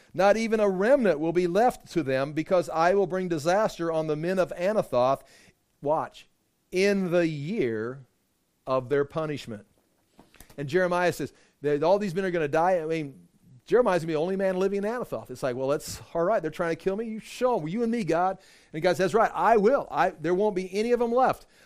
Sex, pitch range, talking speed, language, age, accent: male, 125-185 Hz, 220 wpm, English, 40-59, American